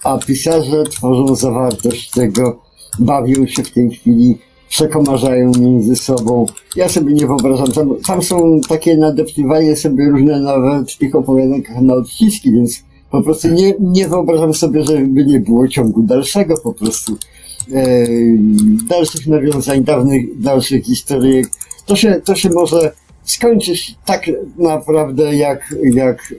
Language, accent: Polish, native